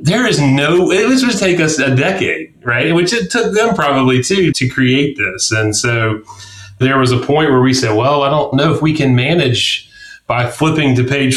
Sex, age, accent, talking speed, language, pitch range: male, 30-49, American, 215 wpm, English, 105-140 Hz